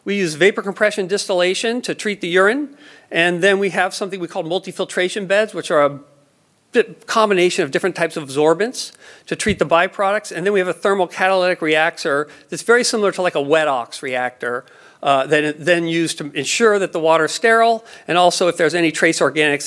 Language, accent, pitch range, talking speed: English, American, 150-195 Hz, 205 wpm